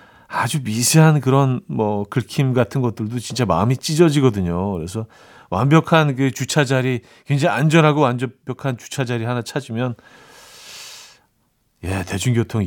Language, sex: Korean, male